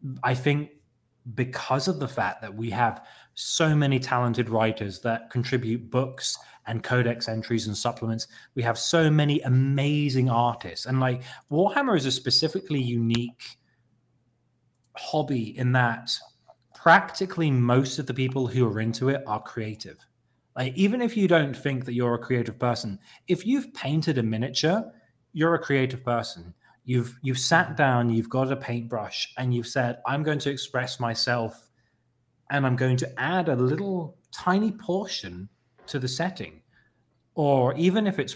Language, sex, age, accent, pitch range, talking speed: English, male, 20-39, British, 120-145 Hz, 155 wpm